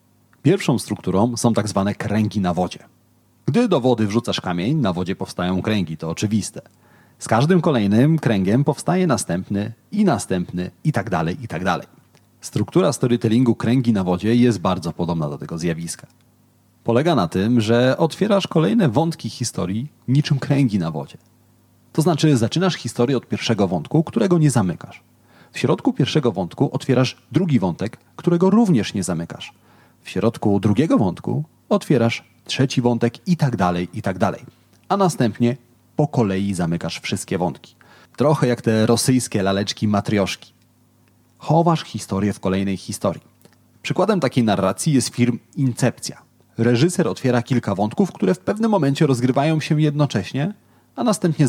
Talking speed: 150 wpm